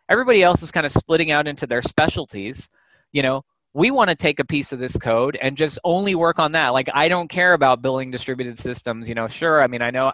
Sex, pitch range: male, 125-150 Hz